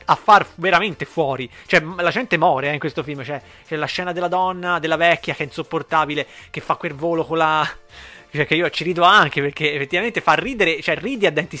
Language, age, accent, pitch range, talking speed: Italian, 30-49, native, 145-180 Hz, 220 wpm